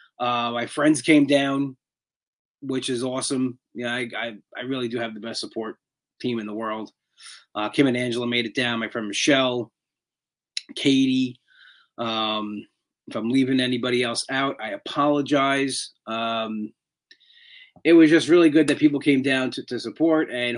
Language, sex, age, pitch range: English, male, 30-49, 120-150 Hz